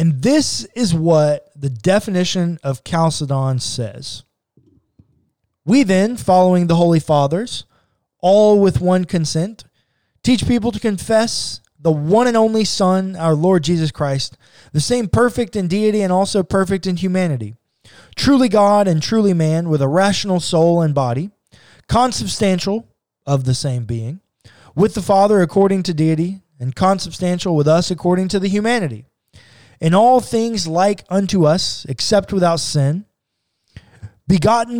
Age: 20-39